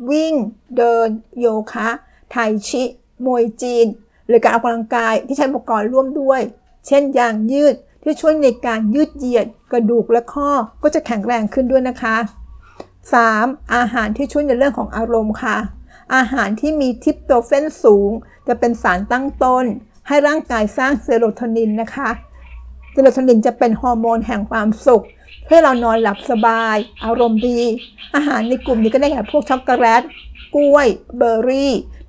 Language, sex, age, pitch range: Thai, female, 60-79, 225-270 Hz